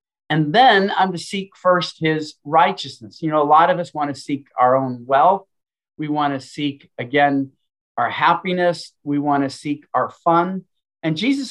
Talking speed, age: 180 wpm, 40-59